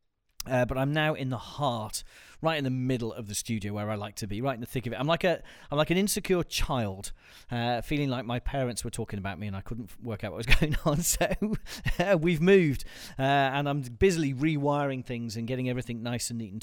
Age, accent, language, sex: 40-59, British, English, male